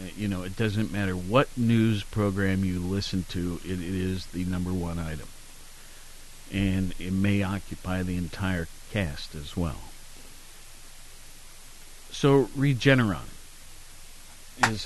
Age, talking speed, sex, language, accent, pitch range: 50-69, 120 wpm, male, English, American, 90-115 Hz